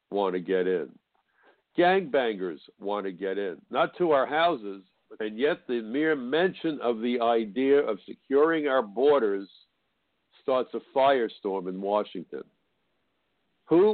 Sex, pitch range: male, 105-150 Hz